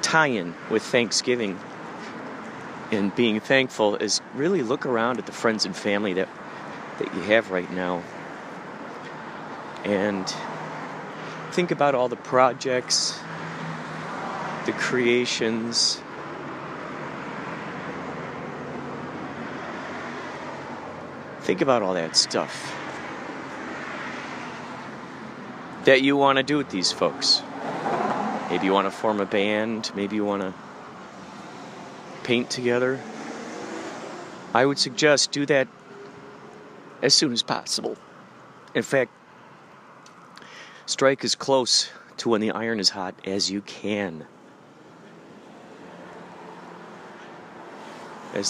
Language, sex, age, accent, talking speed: English, male, 40-59, American, 100 wpm